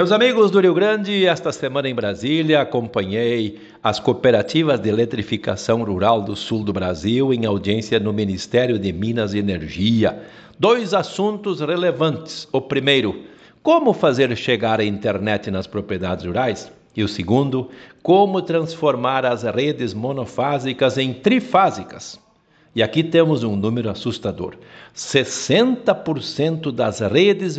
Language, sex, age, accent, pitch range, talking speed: Portuguese, male, 60-79, Brazilian, 110-155 Hz, 130 wpm